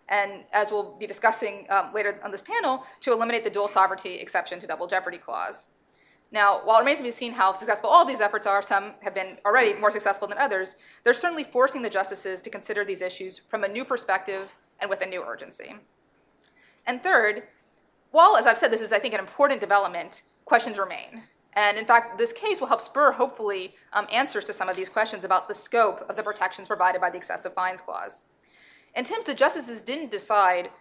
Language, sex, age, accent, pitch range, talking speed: English, female, 20-39, American, 195-245 Hz, 210 wpm